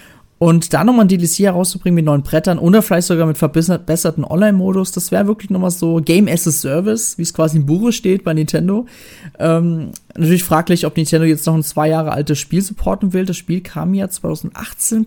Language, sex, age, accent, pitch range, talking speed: German, male, 30-49, German, 155-195 Hz, 210 wpm